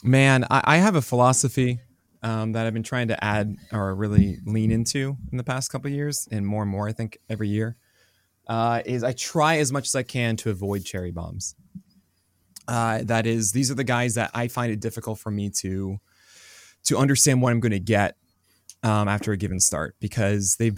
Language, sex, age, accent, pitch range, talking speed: English, male, 20-39, American, 100-125 Hz, 205 wpm